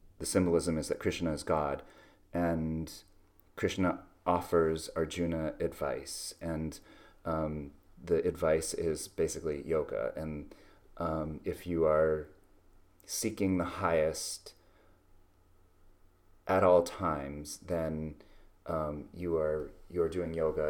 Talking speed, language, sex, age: 105 wpm, English, male, 30-49